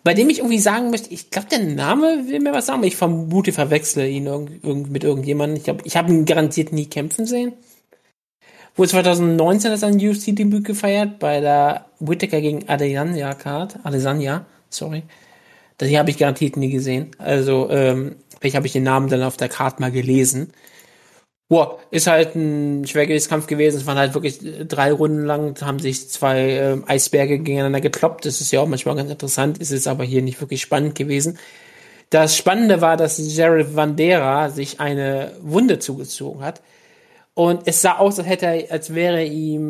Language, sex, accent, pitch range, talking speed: German, male, German, 145-185 Hz, 175 wpm